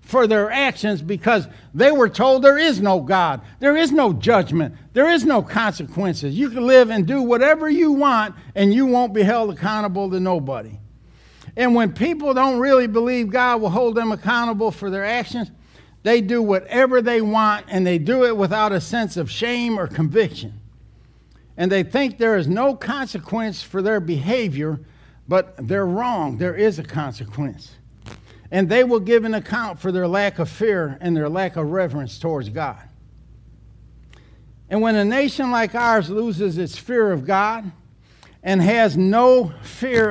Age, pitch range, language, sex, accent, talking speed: 60-79, 170-230 Hz, English, male, American, 170 wpm